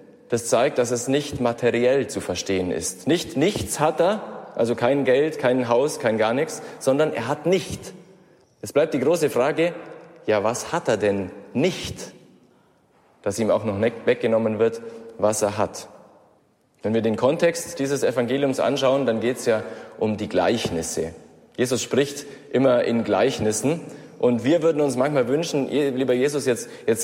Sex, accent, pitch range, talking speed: male, German, 115-155 Hz, 165 wpm